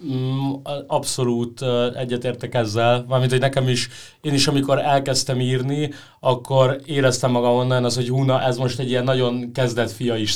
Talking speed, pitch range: 155 wpm, 125-140 Hz